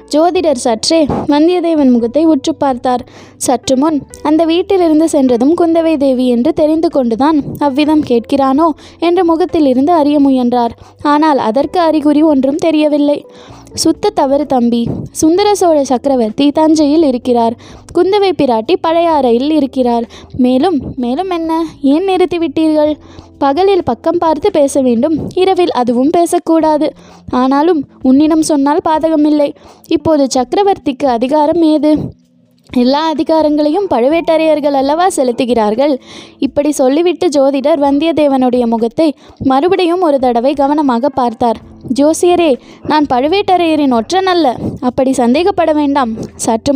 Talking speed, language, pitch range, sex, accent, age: 105 wpm, Tamil, 265-330 Hz, female, native, 20-39